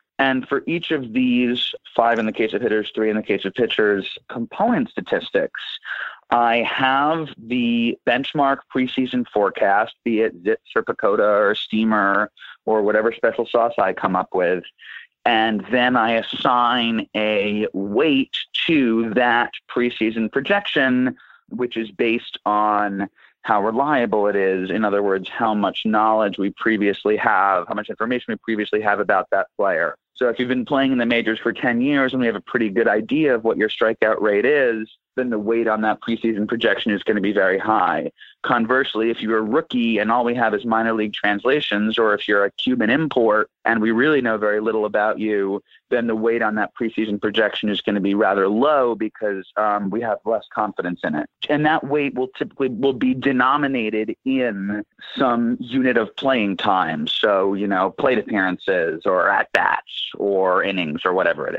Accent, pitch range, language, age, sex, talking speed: American, 105-125 Hz, English, 30-49, male, 180 wpm